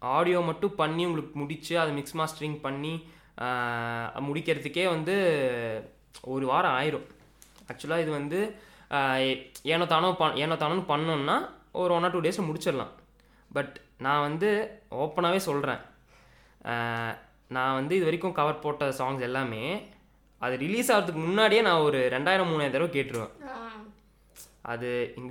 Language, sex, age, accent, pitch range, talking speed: English, male, 20-39, Indian, 130-185 Hz, 85 wpm